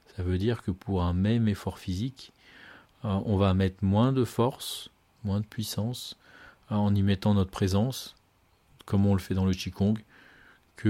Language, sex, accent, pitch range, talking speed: French, male, French, 95-115 Hz, 170 wpm